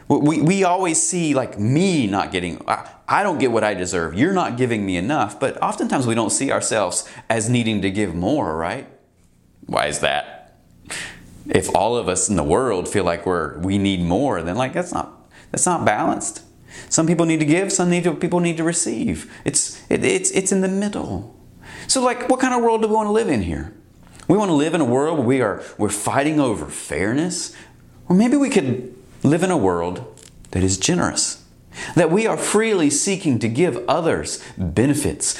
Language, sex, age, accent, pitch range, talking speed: English, male, 30-49, American, 110-185 Hz, 205 wpm